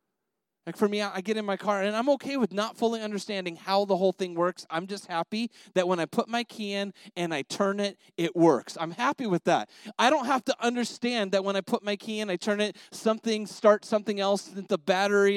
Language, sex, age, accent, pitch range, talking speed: English, male, 30-49, American, 195-250 Hz, 240 wpm